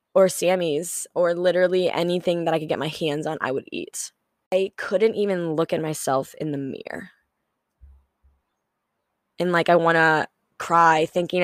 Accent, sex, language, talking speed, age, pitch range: American, female, English, 165 wpm, 10-29, 170-215 Hz